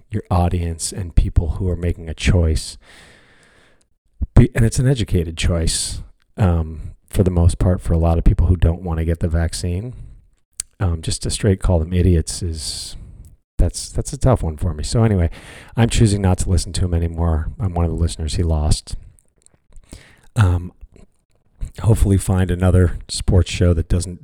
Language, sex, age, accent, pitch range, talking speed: English, male, 40-59, American, 85-100 Hz, 175 wpm